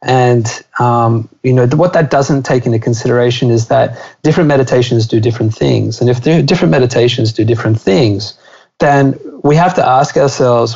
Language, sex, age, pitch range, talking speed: English, male, 30-49, 120-145 Hz, 165 wpm